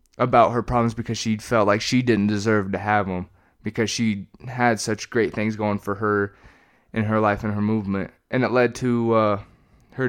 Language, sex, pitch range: English, male, 105-120 Hz